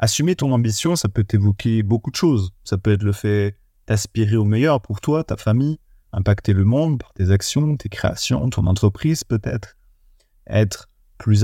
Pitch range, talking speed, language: 95-115 Hz, 180 wpm, French